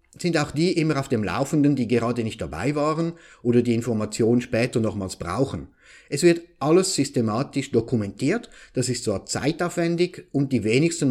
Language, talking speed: English, 160 wpm